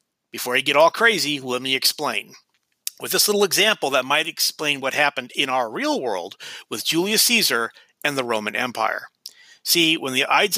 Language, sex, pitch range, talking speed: English, male, 140-195 Hz, 180 wpm